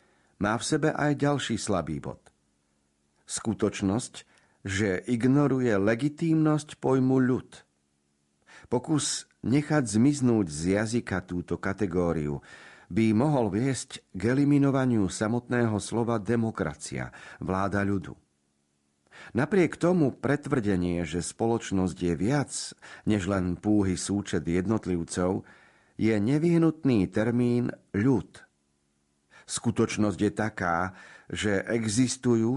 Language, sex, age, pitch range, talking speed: Slovak, male, 50-69, 90-120 Hz, 95 wpm